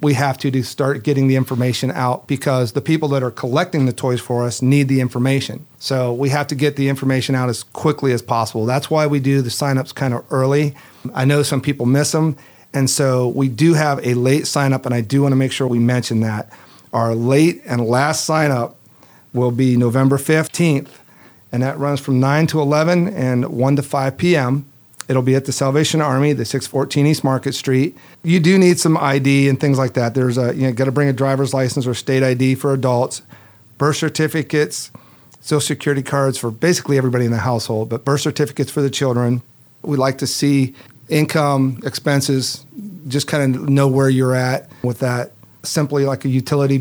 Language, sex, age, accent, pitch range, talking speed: English, male, 40-59, American, 125-145 Hz, 205 wpm